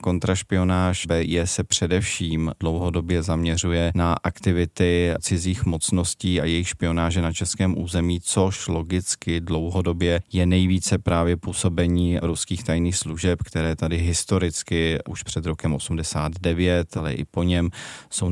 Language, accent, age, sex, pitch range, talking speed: Czech, native, 30-49, male, 85-95 Hz, 125 wpm